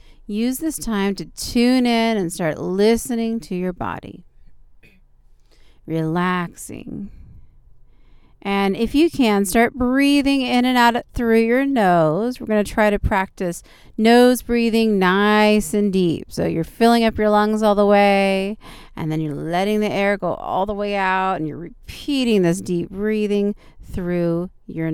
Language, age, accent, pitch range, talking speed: English, 40-59, American, 175-215 Hz, 155 wpm